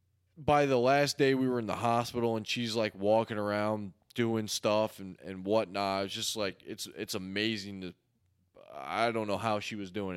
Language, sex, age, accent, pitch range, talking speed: English, male, 20-39, American, 100-115 Hz, 190 wpm